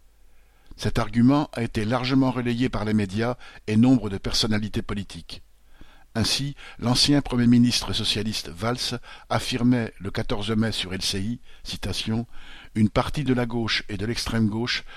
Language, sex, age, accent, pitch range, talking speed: French, male, 50-69, French, 100-125 Hz, 145 wpm